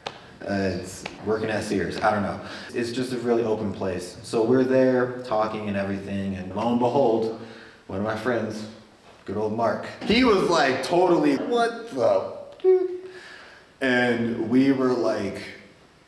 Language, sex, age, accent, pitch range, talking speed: English, male, 20-39, American, 105-130 Hz, 155 wpm